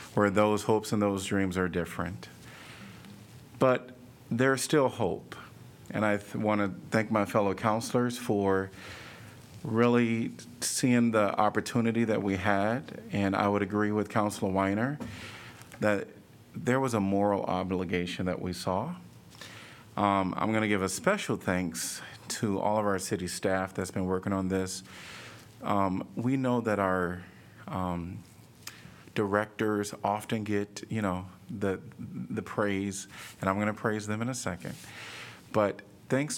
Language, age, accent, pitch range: English, 40-59, American, 95-115 Hz